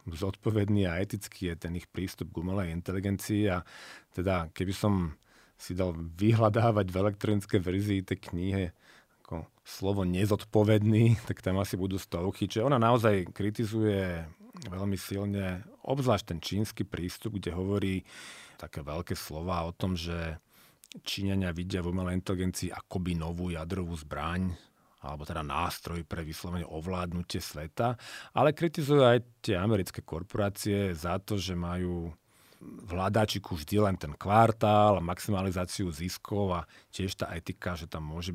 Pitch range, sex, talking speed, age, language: 85-105 Hz, male, 140 wpm, 40-59, Slovak